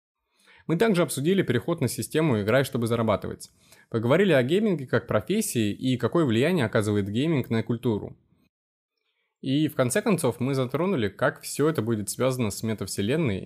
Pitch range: 105-135 Hz